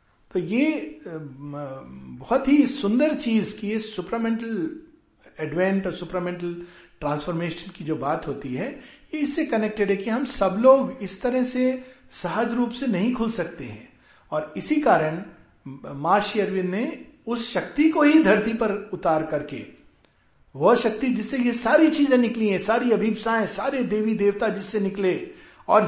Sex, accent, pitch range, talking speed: male, native, 165-235 Hz, 150 wpm